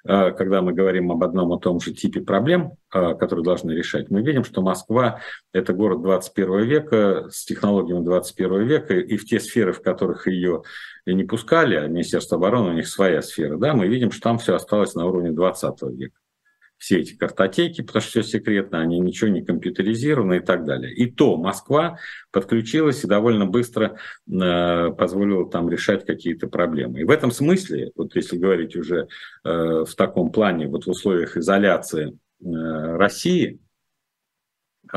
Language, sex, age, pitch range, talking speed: Russian, male, 50-69, 90-115 Hz, 160 wpm